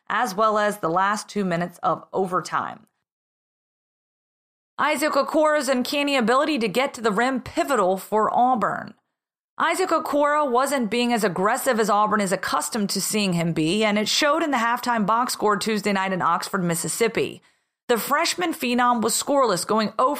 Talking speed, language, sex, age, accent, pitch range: 165 wpm, English, female, 30-49, American, 210-260 Hz